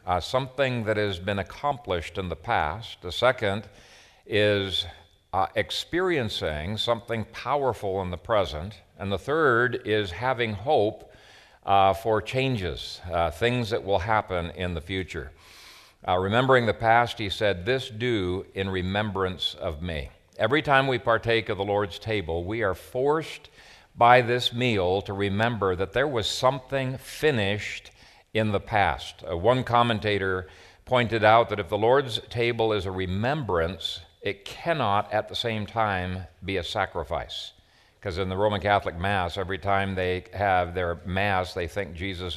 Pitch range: 90-115 Hz